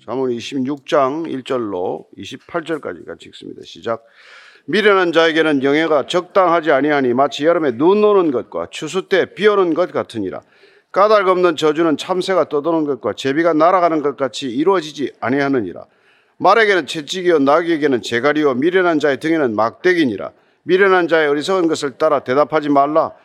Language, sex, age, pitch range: Korean, male, 40-59, 145-185 Hz